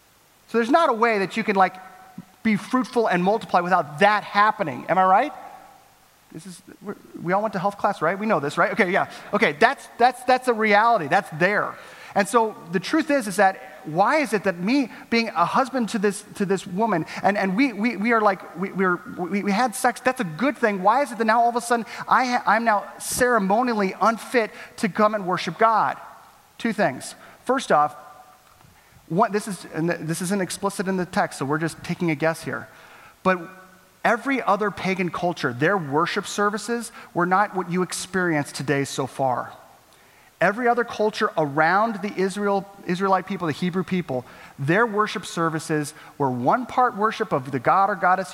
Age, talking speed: 30-49, 200 wpm